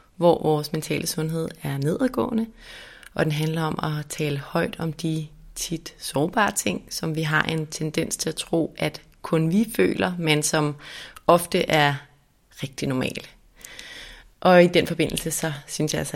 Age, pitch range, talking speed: 30-49, 150-175 Hz, 165 wpm